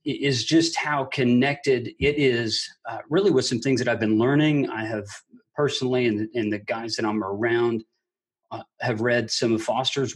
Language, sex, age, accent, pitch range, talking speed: English, male, 40-59, American, 110-140 Hz, 185 wpm